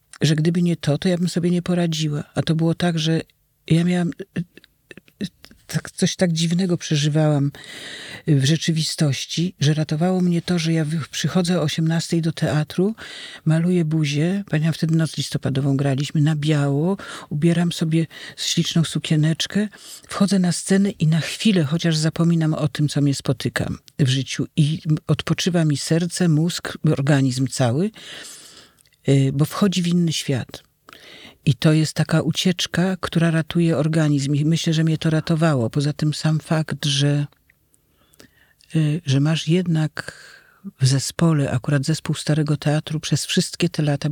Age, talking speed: 50-69, 145 wpm